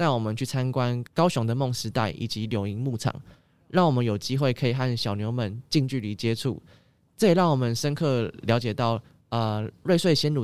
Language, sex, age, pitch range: Chinese, male, 10-29, 115-140 Hz